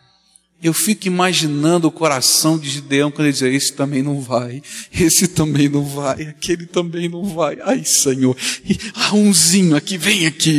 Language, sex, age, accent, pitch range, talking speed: Portuguese, male, 50-69, Brazilian, 115-165 Hz, 170 wpm